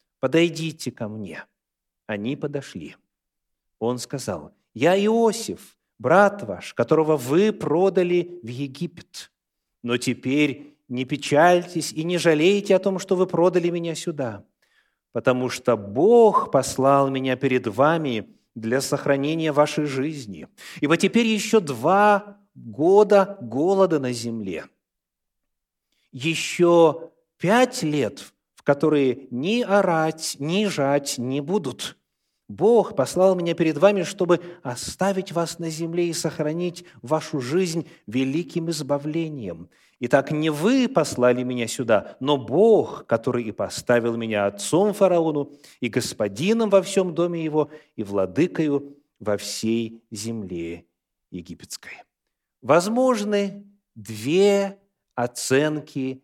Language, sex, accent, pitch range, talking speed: Russian, male, native, 125-175 Hz, 110 wpm